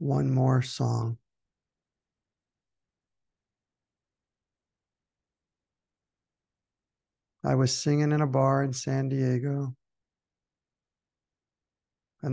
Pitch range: 120-135 Hz